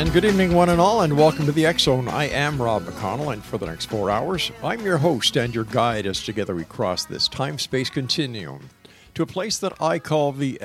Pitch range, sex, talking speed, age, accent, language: 105-140 Hz, male, 230 wpm, 50-69, American, English